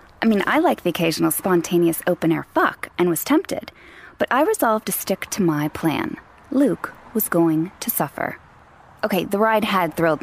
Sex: female